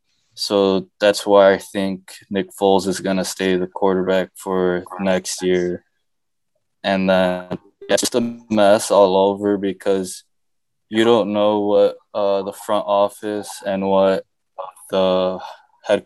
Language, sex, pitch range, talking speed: English, male, 95-110 Hz, 140 wpm